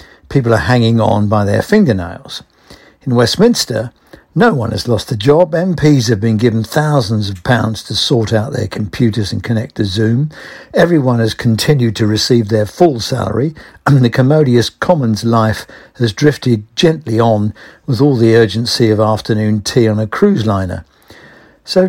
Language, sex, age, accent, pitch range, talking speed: English, male, 60-79, British, 110-140 Hz, 160 wpm